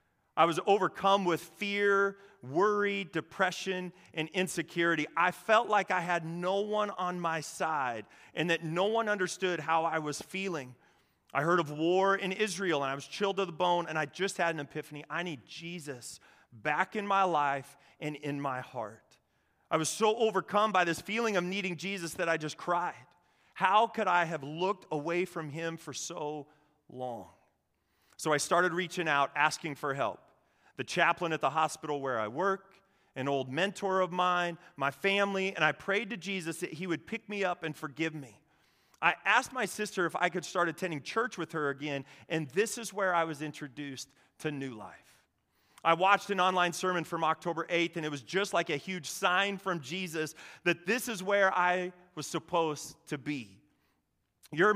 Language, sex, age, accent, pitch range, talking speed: English, male, 30-49, American, 150-190 Hz, 185 wpm